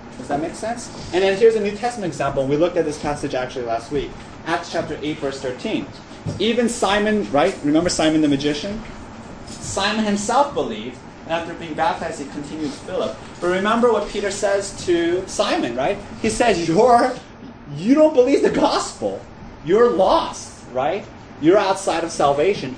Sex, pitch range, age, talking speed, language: male, 125-200 Hz, 30-49, 175 wpm, English